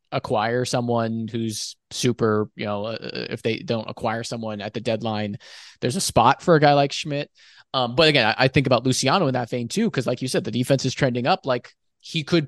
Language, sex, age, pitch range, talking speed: English, male, 20-39, 115-145 Hz, 225 wpm